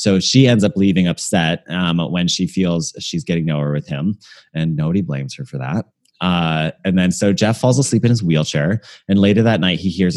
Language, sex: English, male